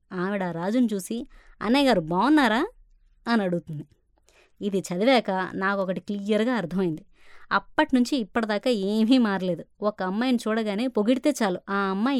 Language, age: Telugu, 20-39